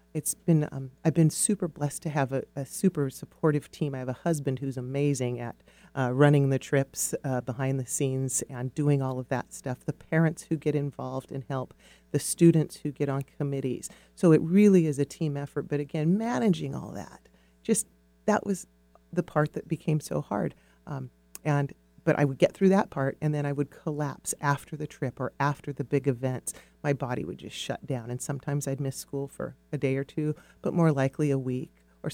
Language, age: English, 40-59